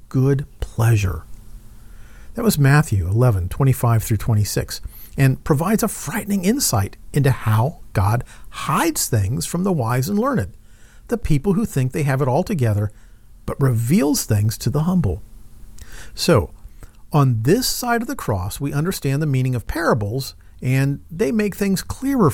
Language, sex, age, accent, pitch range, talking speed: English, male, 50-69, American, 110-175 Hz, 155 wpm